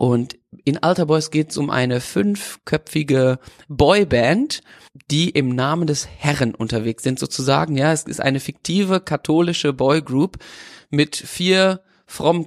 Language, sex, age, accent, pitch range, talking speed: German, male, 30-49, German, 130-155 Hz, 135 wpm